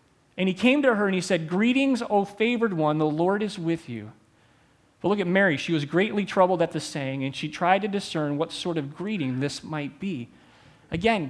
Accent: American